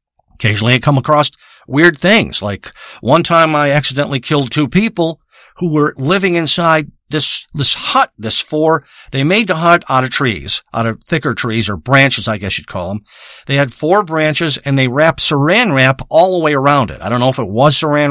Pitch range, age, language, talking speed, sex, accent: 130-160 Hz, 50-69, English, 205 wpm, male, American